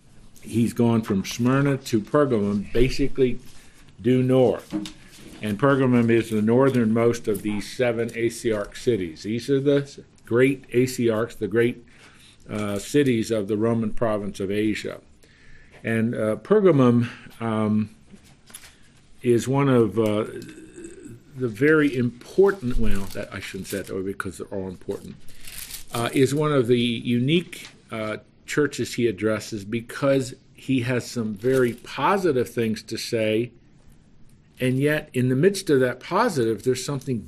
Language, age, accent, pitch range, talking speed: English, 50-69, American, 110-135 Hz, 130 wpm